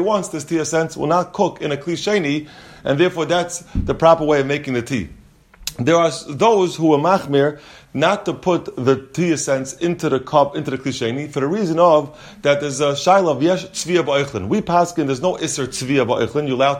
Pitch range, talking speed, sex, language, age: 140-175 Hz, 210 wpm, male, English, 30-49